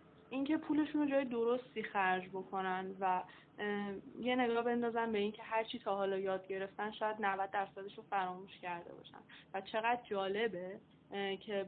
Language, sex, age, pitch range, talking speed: Persian, female, 10-29, 195-235 Hz, 155 wpm